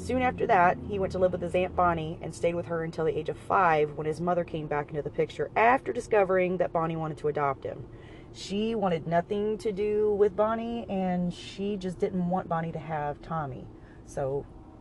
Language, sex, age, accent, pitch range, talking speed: English, female, 30-49, American, 165-210 Hz, 215 wpm